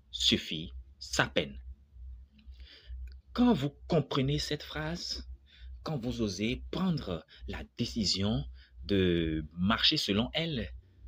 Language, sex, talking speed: French, male, 95 wpm